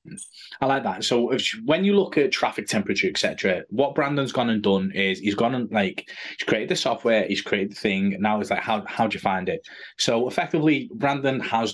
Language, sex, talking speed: English, male, 230 wpm